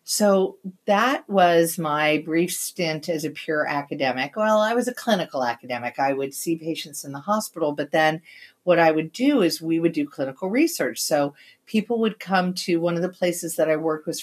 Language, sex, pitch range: English, female, 135-170 Hz